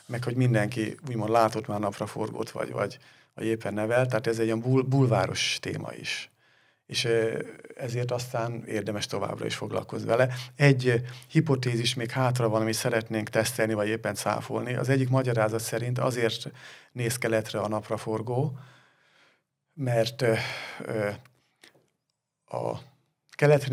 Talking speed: 130 wpm